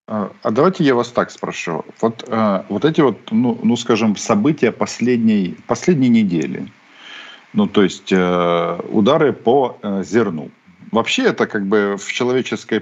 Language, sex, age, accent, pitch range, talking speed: Ukrainian, male, 50-69, native, 95-125 Hz, 135 wpm